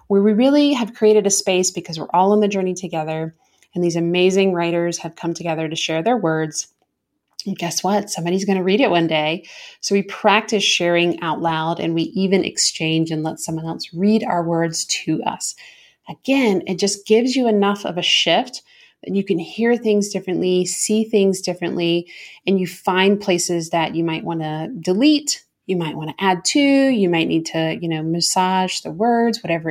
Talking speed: 195 wpm